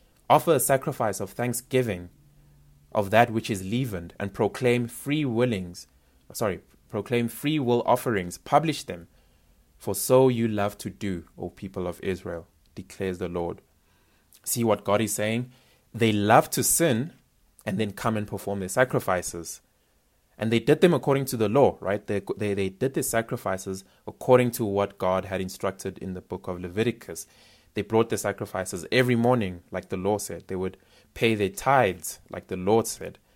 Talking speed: 170 wpm